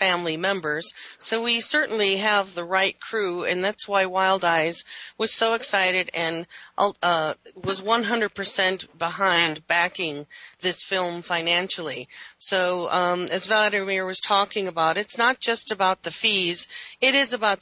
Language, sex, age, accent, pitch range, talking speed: English, female, 40-59, American, 175-210 Hz, 145 wpm